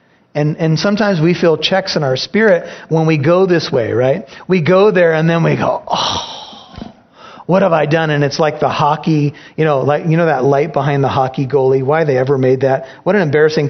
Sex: male